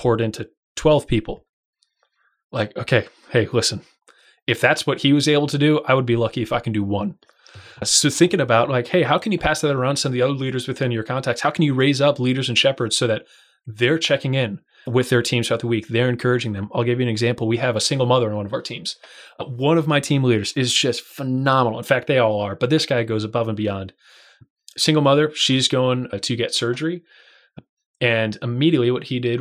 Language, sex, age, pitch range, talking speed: English, male, 20-39, 115-140 Hz, 230 wpm